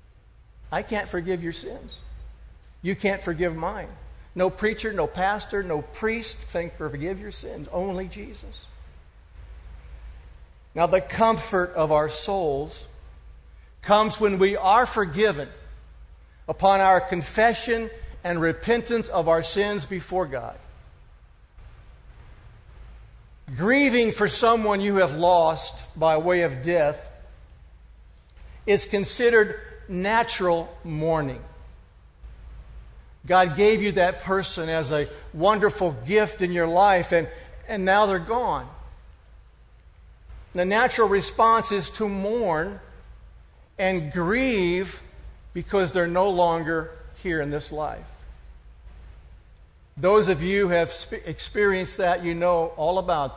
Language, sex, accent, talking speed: English, male, American, 110 wpm